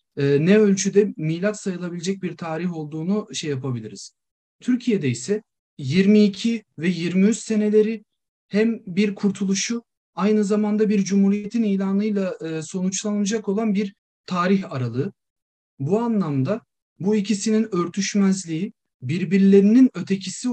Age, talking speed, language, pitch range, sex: 40-59, 100 wpm, Turkish, 150-205 Hz, male